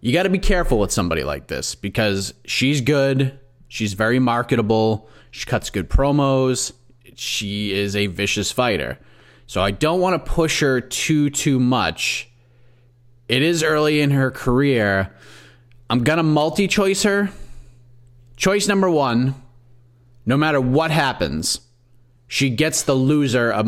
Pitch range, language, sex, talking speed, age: 105-135 Hz, English, male, 145 wpm, 30-49